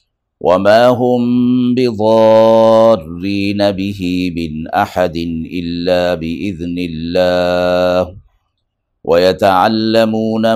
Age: 50-69